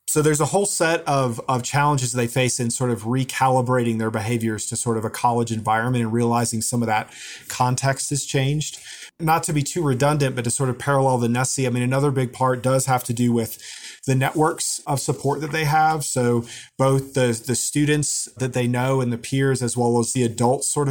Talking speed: 220 wpm